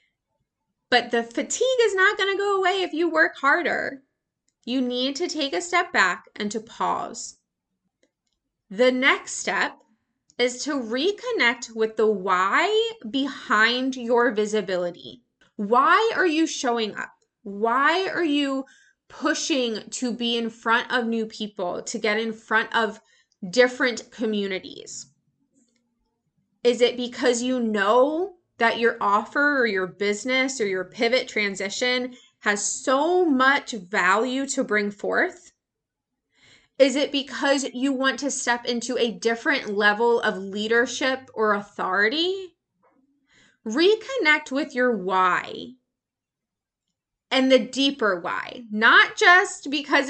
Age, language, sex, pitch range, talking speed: 20-39, English, female, 220-295 Hz, 125 wpm